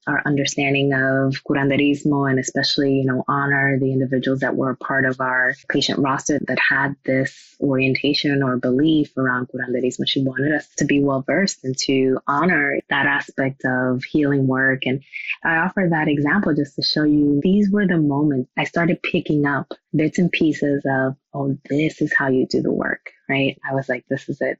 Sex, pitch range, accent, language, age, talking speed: female, 135-150 Hz, American, English, 20-39, 185 wpm